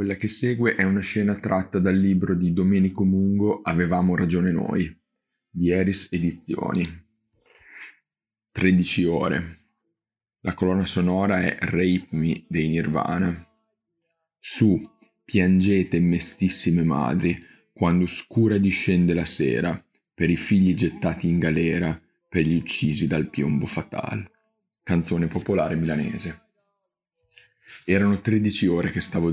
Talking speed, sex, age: 115 wpm, male, 30-49